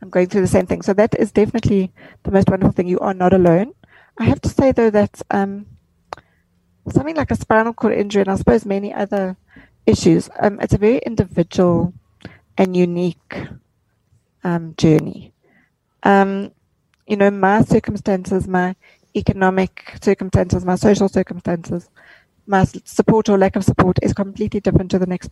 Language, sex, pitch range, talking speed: English, female, 180-205 Hz, 165 wpm